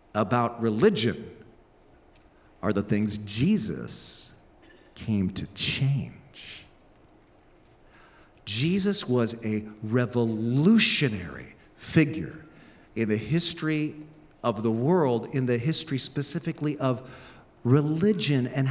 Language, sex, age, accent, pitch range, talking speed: English, male, 50-69, American, 145-210 Hz, 85 wpm